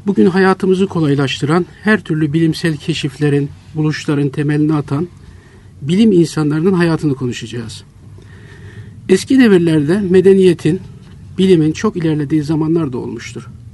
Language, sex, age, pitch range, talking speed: Turkish, male, 50-69, 125-170 Hz, 100 wpm